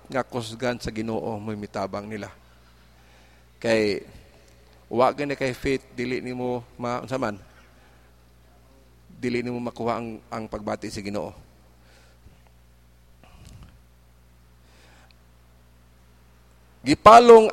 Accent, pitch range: Filipino, 105-170 Hz